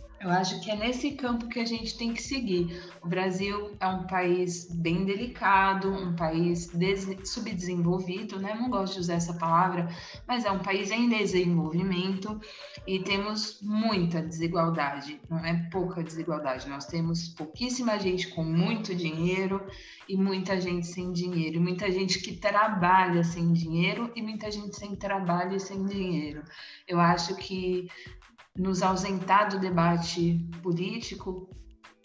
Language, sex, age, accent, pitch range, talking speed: Portuguese, female, 20-39, Brazilian, 175-215 Hz, 145 wpm